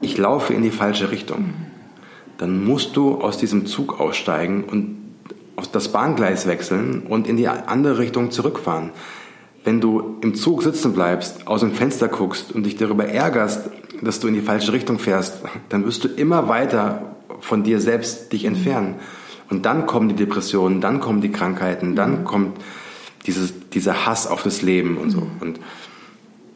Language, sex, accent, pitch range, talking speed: German, male, German, 95-115 Hz, 170 wpm